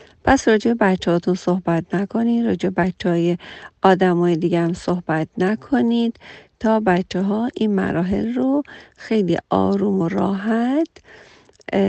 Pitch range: 175-230 Hz